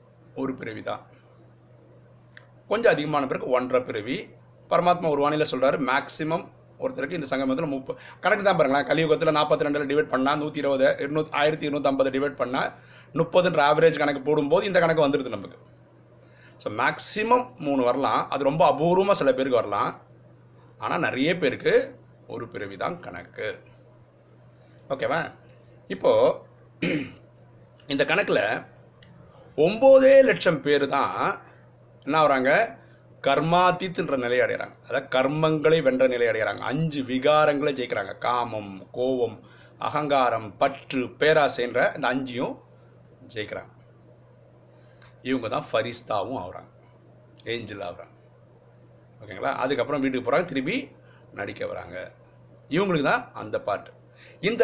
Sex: male